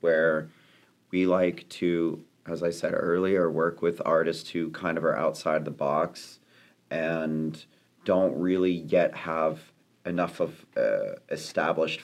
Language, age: English, 30-49